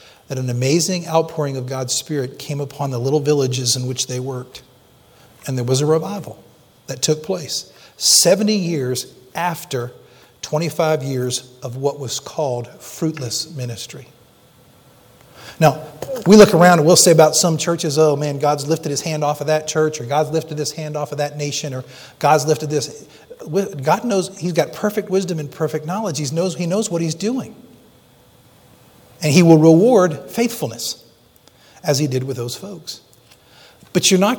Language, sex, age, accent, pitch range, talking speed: English, male, 40-59, American, 130-170 Hz, 170 wpm